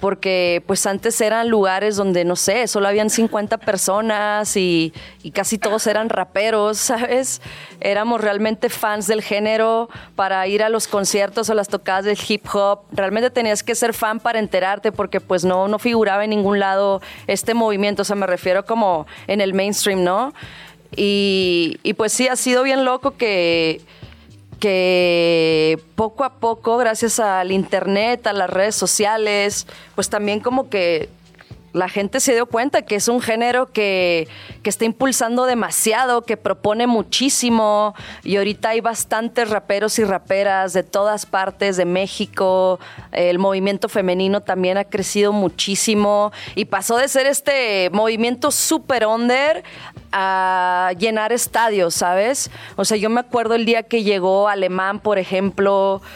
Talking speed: 155 wpm